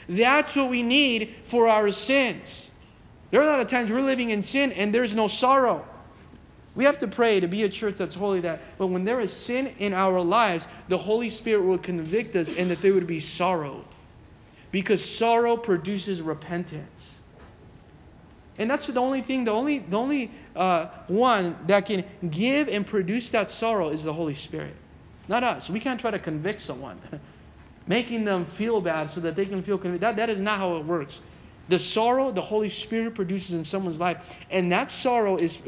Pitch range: 180-235 Hz